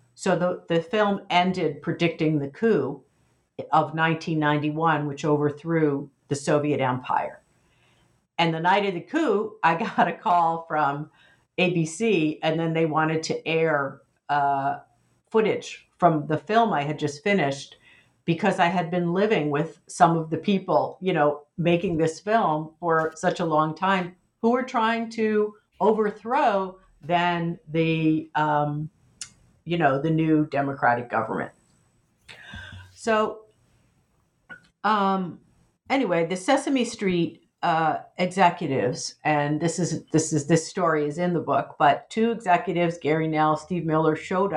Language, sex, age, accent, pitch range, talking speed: English, female, 50-69, American, 155-185 Hz, 140 wpm